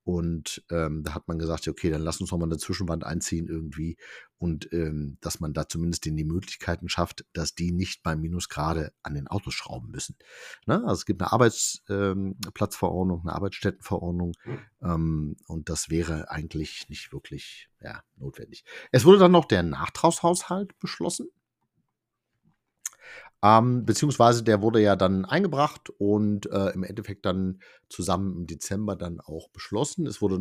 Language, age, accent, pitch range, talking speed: German, 50-69, German, 85-105 Hz, 160 wpm